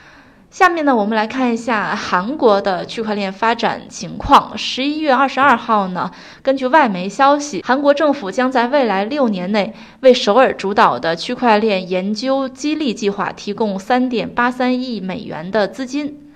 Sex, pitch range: female, 210-275 Hz